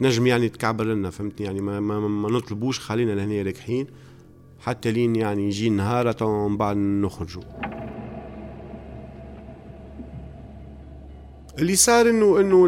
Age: 40-59